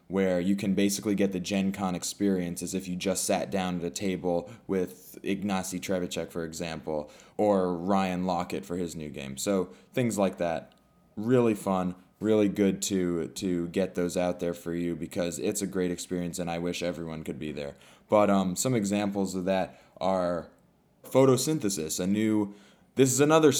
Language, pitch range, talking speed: English, 90-110 Hz, 180 wpm